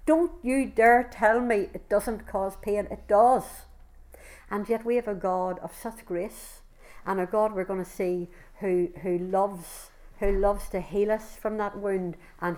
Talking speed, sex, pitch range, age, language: 185 wpm, female, 175-210 Hz, 60-79, English